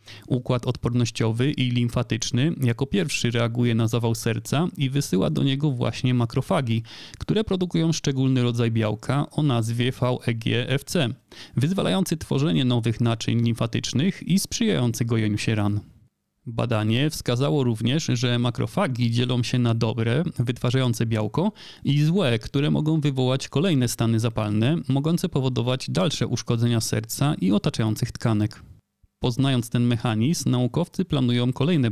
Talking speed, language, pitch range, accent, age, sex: 125 wpm, Polish, 115-145 Hz, native, 30-49, male